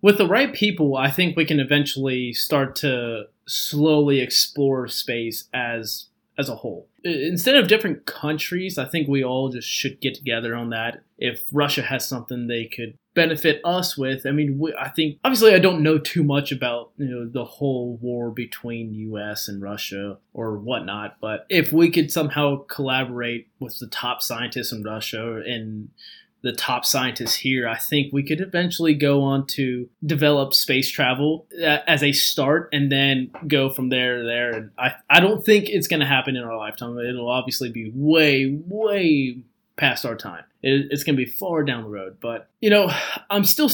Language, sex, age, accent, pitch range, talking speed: English, male, 20-39, American, 125-155 Hz, 185 wpm